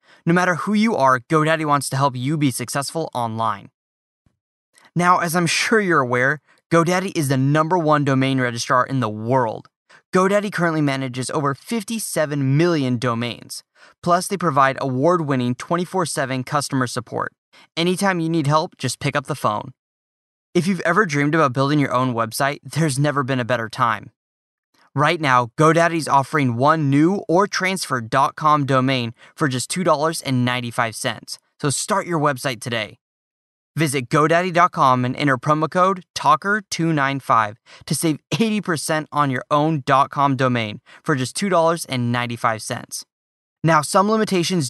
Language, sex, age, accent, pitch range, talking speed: English, male, 10-29, American, 130-165 Hz, 140 wpm